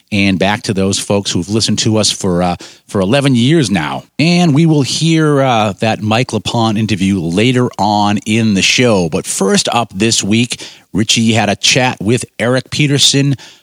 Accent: American